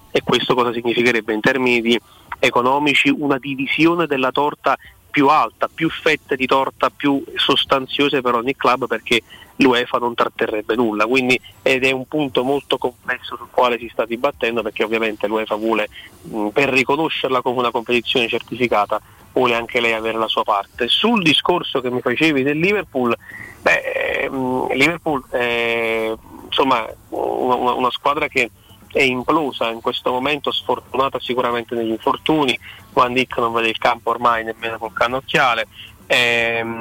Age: 30-49